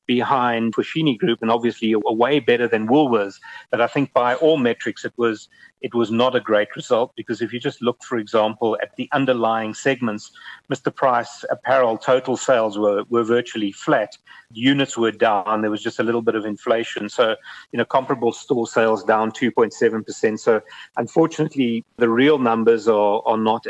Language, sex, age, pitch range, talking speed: English, male, 40-59, 110-125 Hz, 180 wpm